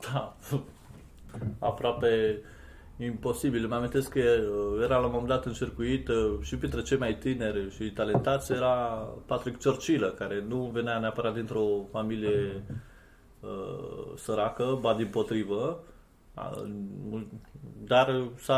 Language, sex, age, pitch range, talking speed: Romanian, male, 30-49, 110-135 Hz, 120 wpm